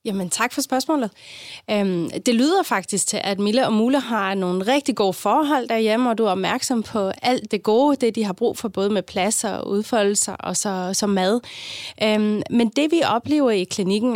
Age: 30-49